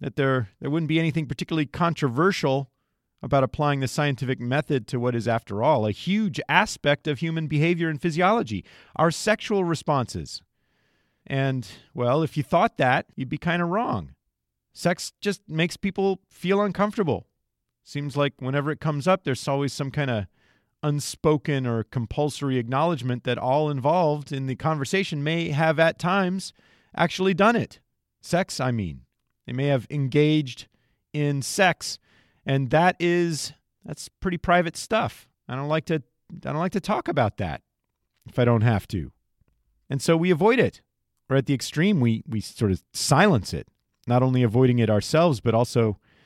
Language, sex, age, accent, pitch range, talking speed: English, male, 40-59, American, 125-175 Hz, 165 wpm